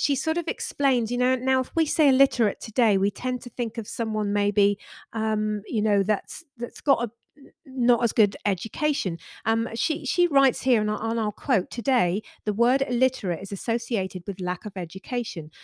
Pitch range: 190-250 Hz